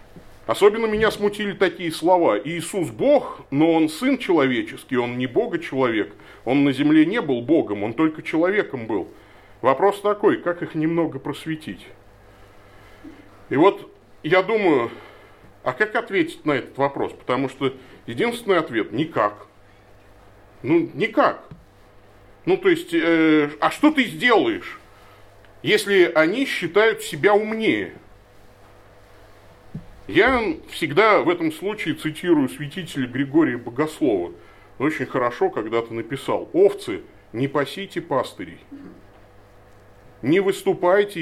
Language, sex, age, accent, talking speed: Russian, male, 40-59, native, 115 wpm